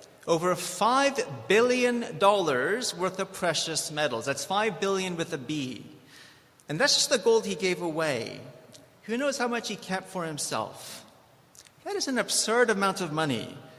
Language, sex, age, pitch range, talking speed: English, male, 40-59, 145-220 Hz, 160 wpm